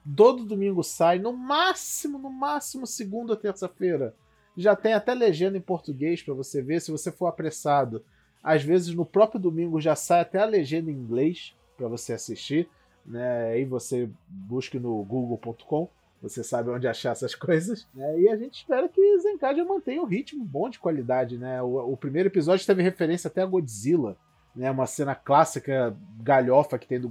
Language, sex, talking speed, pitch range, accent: Portuguese, male, 175 wpm, 125-185 Hz, Brazilian